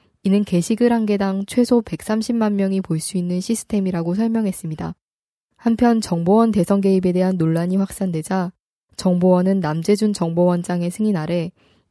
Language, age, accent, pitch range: Korean, 20-39, native, 175-220 Hz